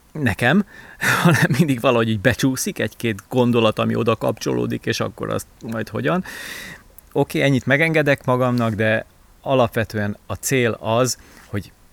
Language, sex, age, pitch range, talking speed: Hungarian, male, 30-49, 100-125 Hz, 125 wpm